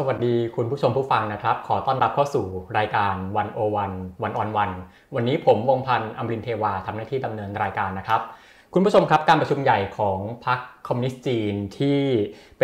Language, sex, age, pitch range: Thai, male, 20-39, 105-135 Hz